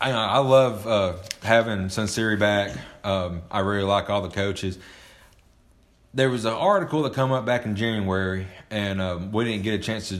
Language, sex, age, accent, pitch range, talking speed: English, male, 30-49, American, 105-130 Hz, 180 wpm